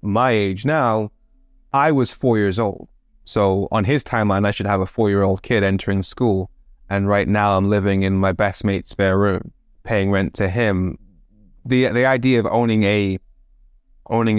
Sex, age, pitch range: male, 20-39, 100-115 Hz